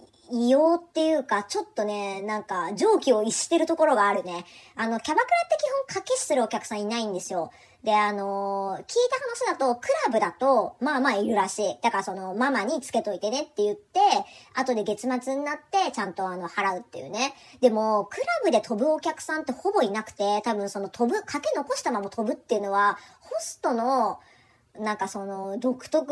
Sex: male